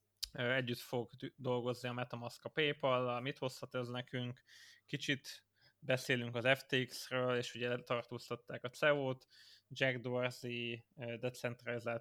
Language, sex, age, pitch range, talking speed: Hungarian, male, 20-39, 120-135 Hz, 115 wpm